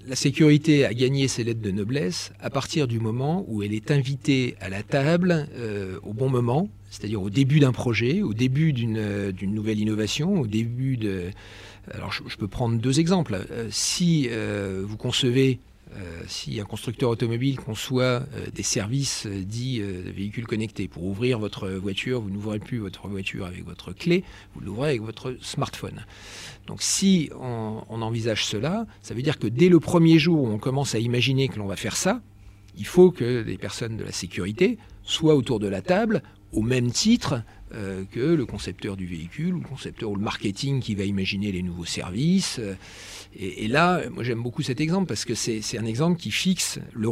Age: 40-59